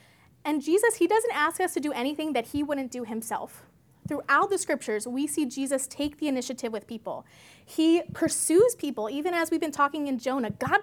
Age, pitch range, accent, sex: 20-39, 250-330 Hz, American, female